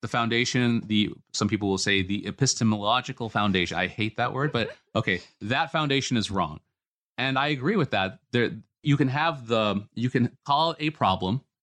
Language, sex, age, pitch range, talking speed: English, male, 30-49, 100-130 Hz, 185 wpm